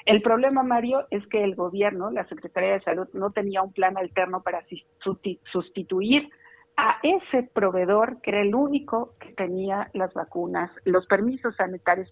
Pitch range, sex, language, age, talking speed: 180-215 Hz, female, Spanish, 50-69, 160 wpm